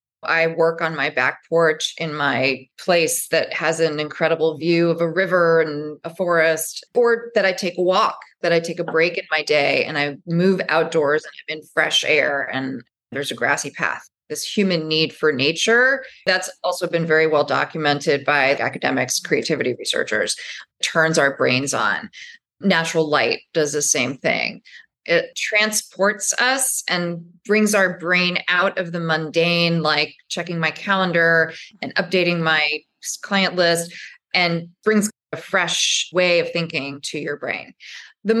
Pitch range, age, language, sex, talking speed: 155-190 Hz, 30-49, English, female, 160 wpm